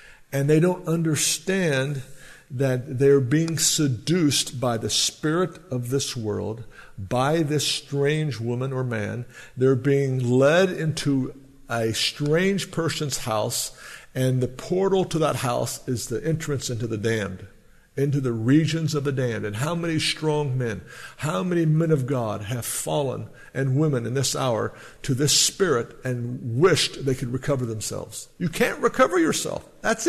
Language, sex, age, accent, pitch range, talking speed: English, male, 60-79, American, 130-180 Hz, 155 wpm